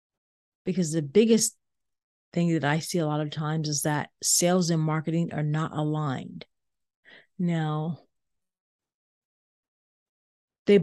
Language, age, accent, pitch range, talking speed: English, 40-59, American, 155-185 Hz, 115 wpm